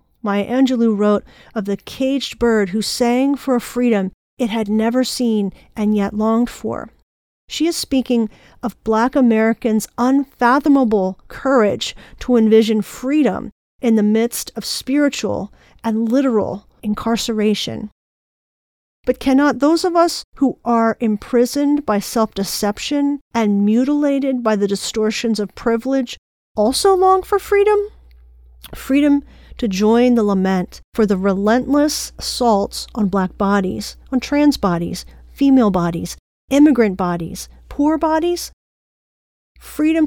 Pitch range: 210-270 Hz